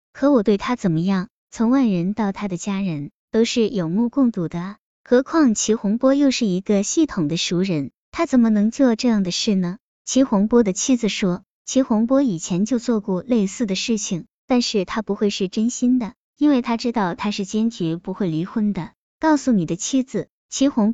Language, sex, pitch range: Chinese, male, 190-255 Hz